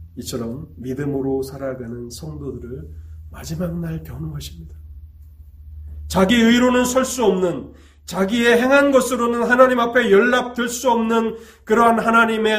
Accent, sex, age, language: native, male, 30-49, Korean